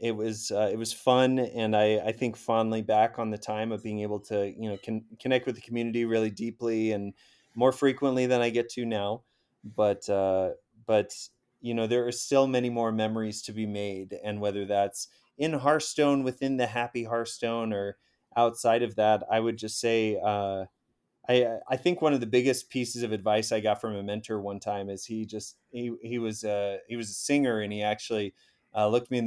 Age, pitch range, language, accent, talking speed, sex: 30-49, 105-125 Hz, English, American, 210 wpm, male